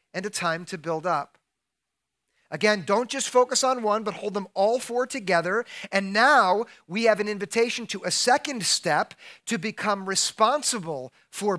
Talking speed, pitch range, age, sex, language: 165 wpm, 185-230 Hz, 40-59, male, English